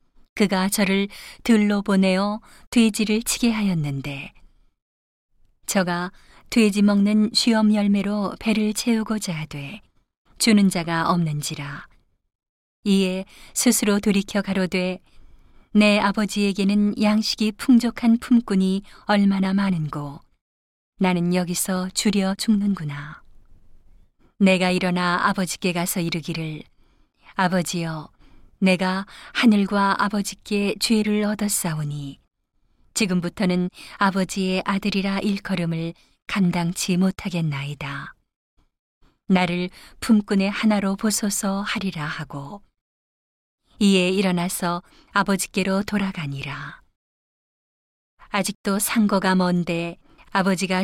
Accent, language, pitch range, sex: native, Korean, 170-205 Hz, female